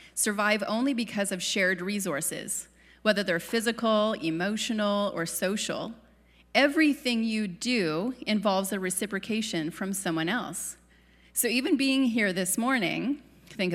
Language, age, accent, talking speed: English, 30-49, American, 120 wpm